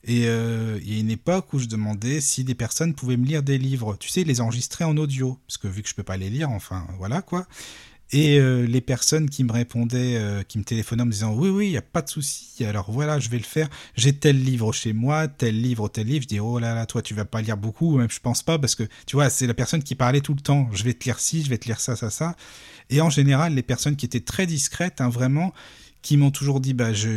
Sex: male